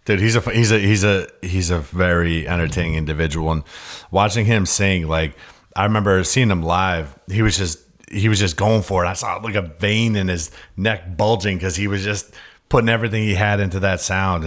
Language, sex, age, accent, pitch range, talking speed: English, male, 30-49, American, 85-100 Hz, 210 wpm